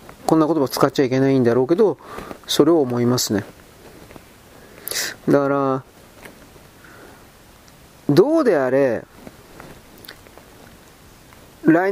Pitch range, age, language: 135-210 Hz, 40-59, Japanese